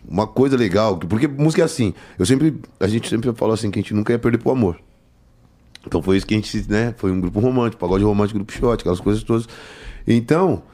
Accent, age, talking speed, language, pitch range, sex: Brazilian, 30-49, 230 wpm, Portuguese, 100-140 Hz, male